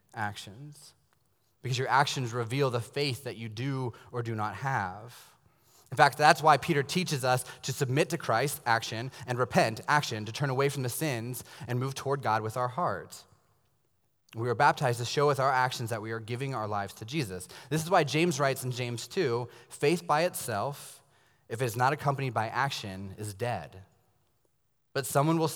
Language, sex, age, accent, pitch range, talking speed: English, male, 20-39, American, 115-145 Hz, 190 wpm